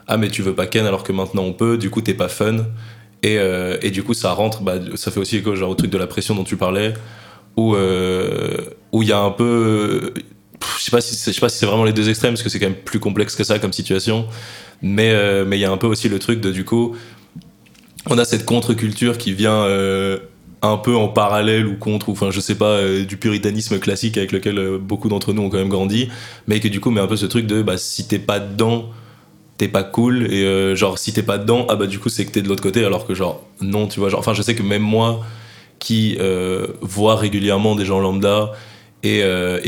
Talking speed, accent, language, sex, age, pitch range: 260 wpm, French, English, male, 20-39, 95-110 Hz